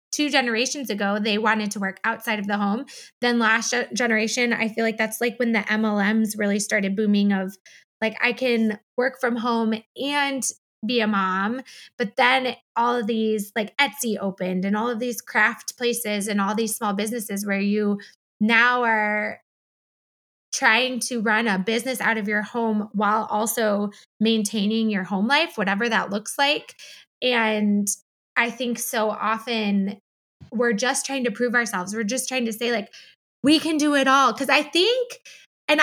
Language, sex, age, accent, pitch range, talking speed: English, female, 20-39, American, 210-250 Hz, 175 wpm